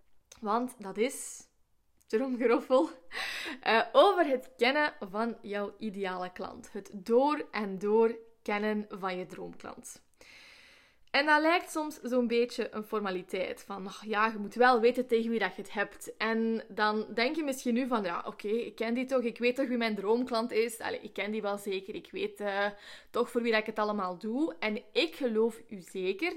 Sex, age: female, 20-39